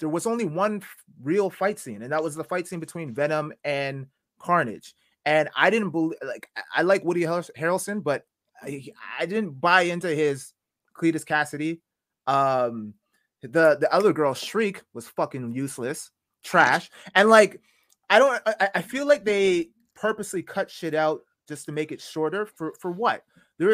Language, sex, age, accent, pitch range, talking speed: English, male, 20-39, American, 145-195 Hz, 170 wpm